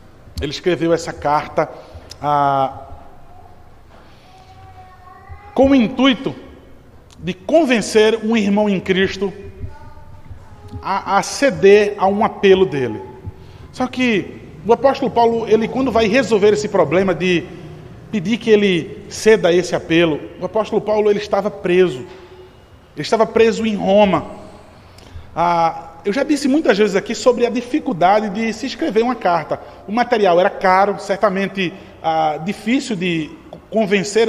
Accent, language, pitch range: Brazilian, Portuguese, 155-220 Hz